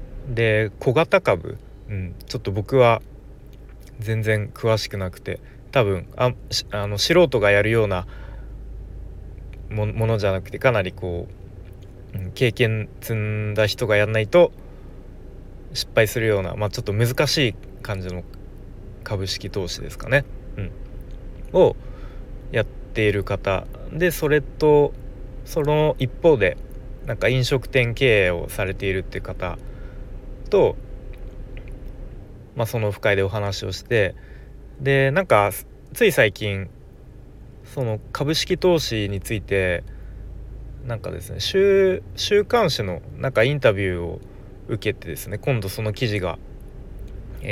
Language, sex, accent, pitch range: Japanese, male, native, 95-130 Hz